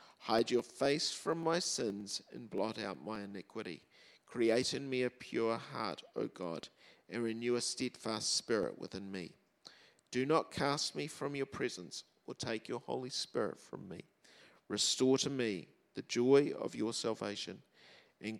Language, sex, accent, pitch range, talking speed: English, male, Australian, 105-135 Hz, 160 wpm